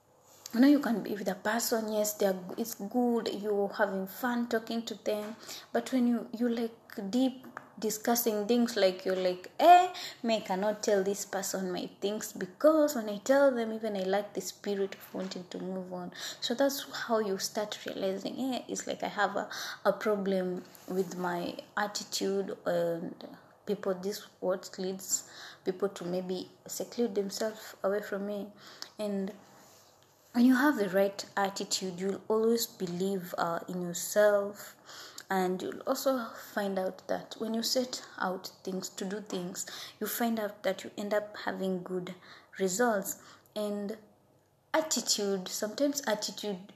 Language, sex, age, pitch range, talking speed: English, female, 20-39, 190-225 Hz, 160 wpm